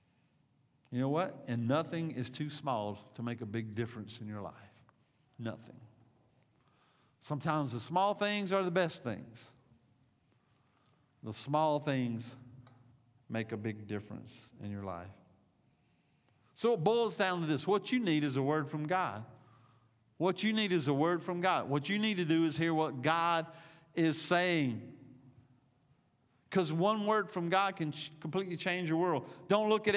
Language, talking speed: English, 160 wpm